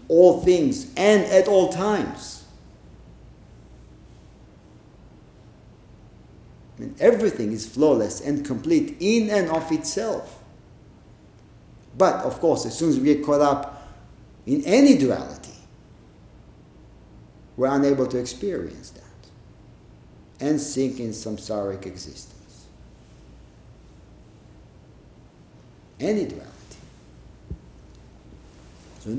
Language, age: English, 50-69